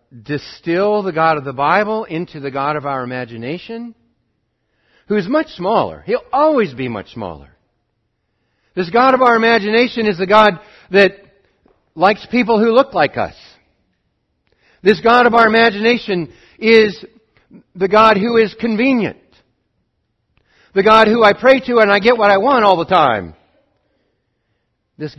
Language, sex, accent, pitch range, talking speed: English, male, American, 120-195 Hz, 150 wpm